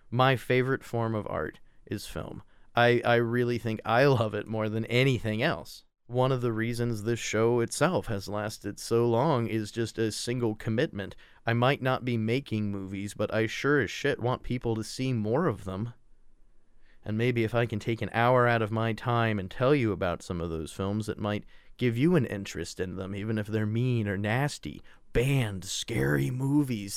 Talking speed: 200 wpm